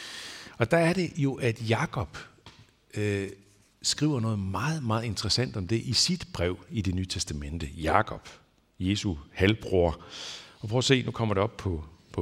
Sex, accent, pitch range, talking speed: male, native, 90-125 Hz, 170 wpm